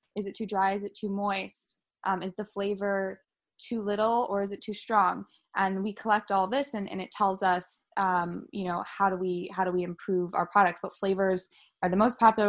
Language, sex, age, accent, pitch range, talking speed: English, female, 20-39, American, 180-210 Hz, 225 wpm